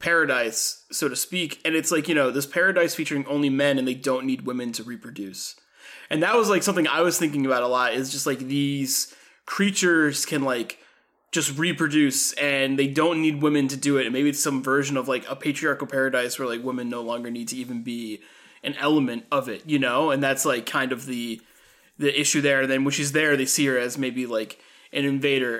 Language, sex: English, male